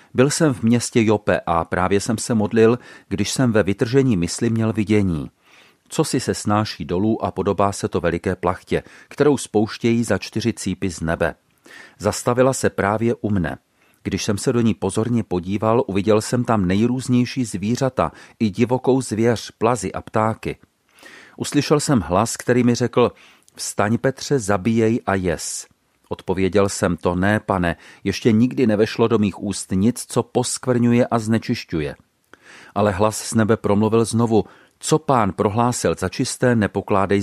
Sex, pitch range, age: male, 100-120 Hz, 40-59